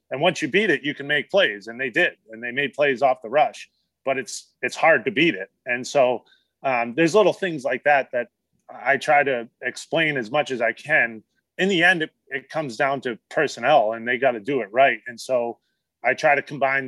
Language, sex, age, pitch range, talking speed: English, male, 30-49, 125-165 Hz, 235 wpm